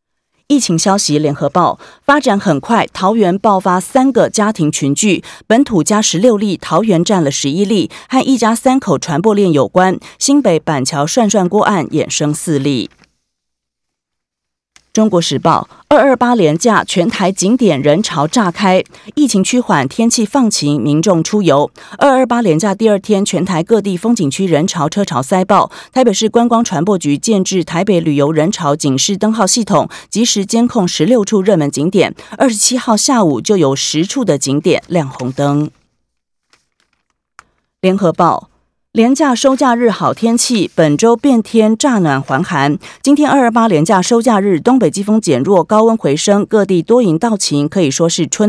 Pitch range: 160-230 Hz